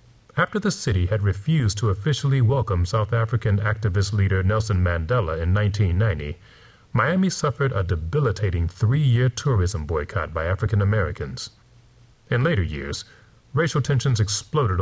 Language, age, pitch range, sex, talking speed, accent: English, 30-49, 95-120 Hz, male, 125 wpm, American